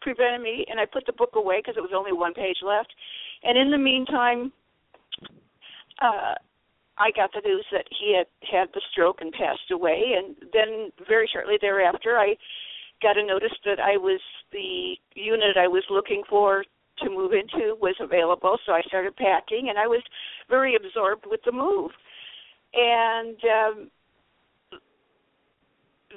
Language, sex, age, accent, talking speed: English, female, 50-69, American, 160 wpm